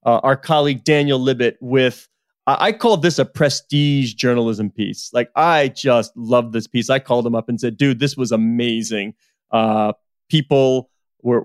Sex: male